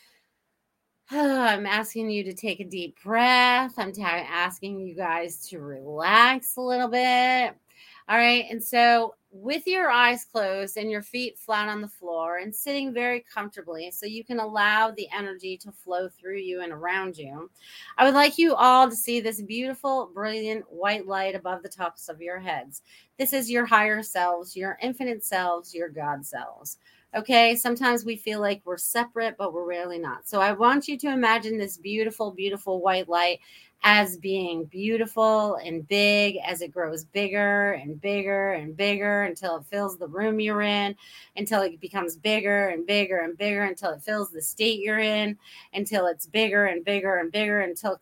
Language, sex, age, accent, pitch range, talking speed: English, female, 30-49, American, 180-225 Hz, 180 wpm